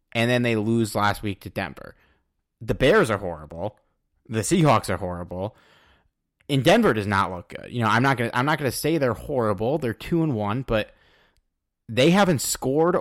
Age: 30-49